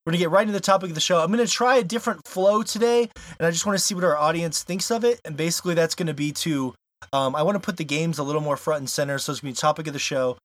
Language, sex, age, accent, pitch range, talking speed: English, male, 20-39, American, 130-180 Hz, 345 wpm